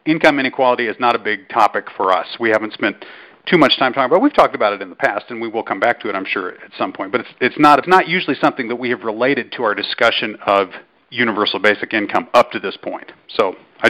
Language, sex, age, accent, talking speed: English, male, 40-59, American, 270 wpm